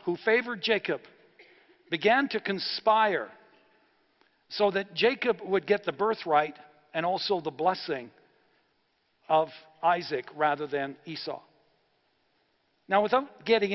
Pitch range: 160-220 Hz